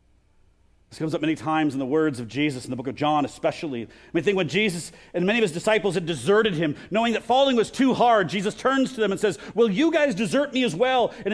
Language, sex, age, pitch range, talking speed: English, male, 40-59, 140-235 Hz, 265 wpm